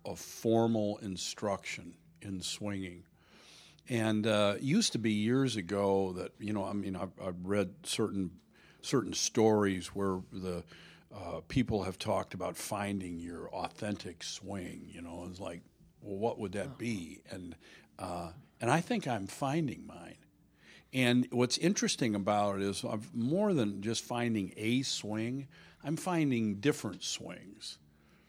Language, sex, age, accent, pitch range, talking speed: English, male, 50-69, American, 100-135 Hz, 145 wpm